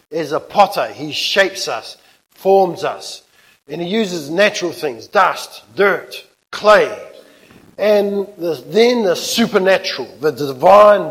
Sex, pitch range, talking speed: male, 175-215 Hz, 120 wpm